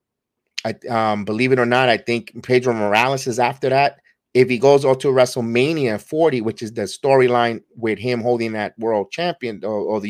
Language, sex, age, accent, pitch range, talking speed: English, male, 30-49, American, 110-130 Hz, 195 wpm